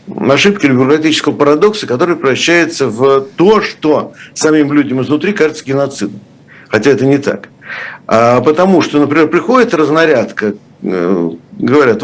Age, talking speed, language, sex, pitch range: 60-79, 120 wpm, Russian, male, 110-155 Hz